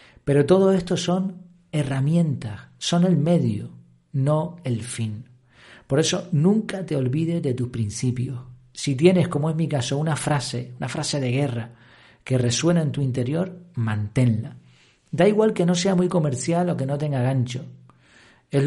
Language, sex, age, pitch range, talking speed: Spanish, male, 40-59, 120-170 Hz, 160 wpm